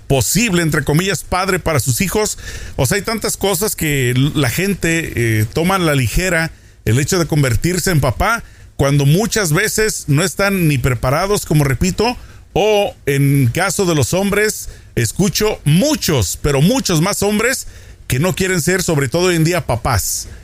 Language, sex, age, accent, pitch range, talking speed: Spanish, male, 40-59, Mexican, 125-185 Hz, 165 wpm